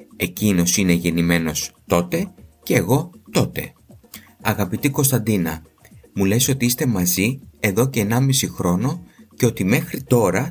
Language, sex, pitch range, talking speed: Greek, male, 90-130 Hz, 125 wpm